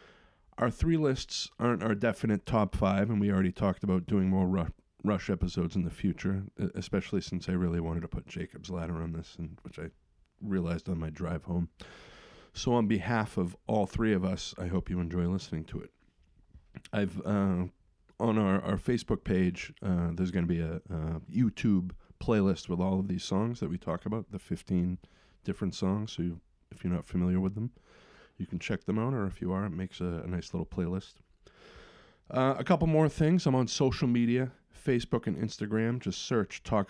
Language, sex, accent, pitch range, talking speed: English, male, American, 90-115 Hz, 200 wpm